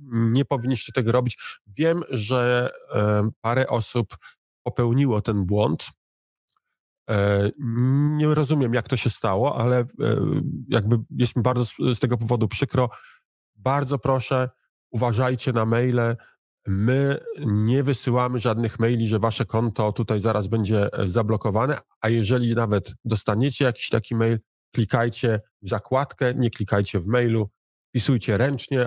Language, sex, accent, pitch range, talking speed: Polish, male, native, 105-125 Hz, 125 wpm